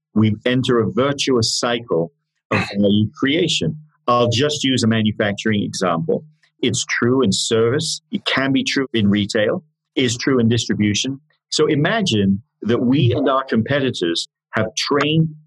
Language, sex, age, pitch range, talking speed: English, male, 50-69, 110-155 Hz, 145 wpm